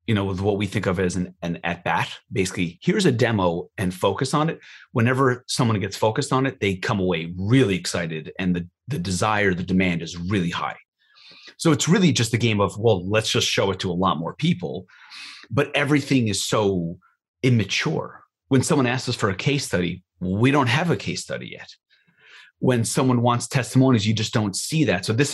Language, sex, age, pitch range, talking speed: English, male, 30-49, 95-130 Hz, 205 wpm